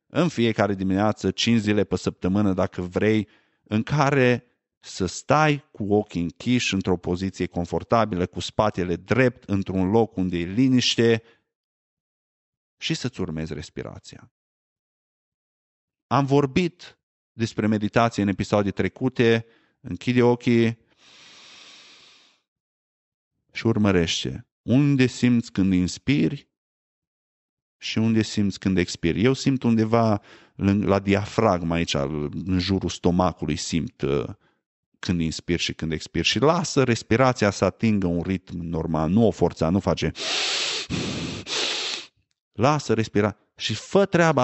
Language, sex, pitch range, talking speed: Romanian, male, 90-120 Hz, 115 wpm